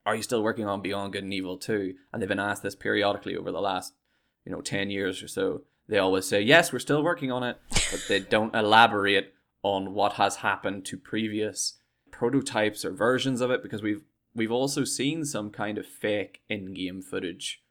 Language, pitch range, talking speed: English, 95-120 Hz, 205 wpm